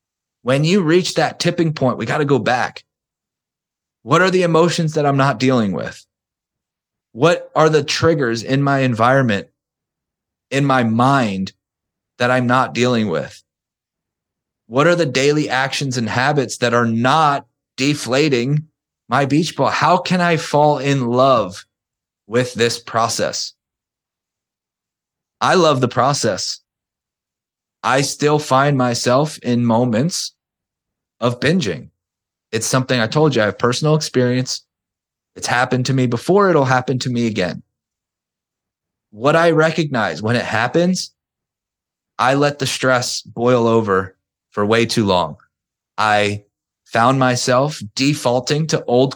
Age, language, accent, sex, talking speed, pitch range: 20-39, English, American, male, 135 wpm, 115-145 Hz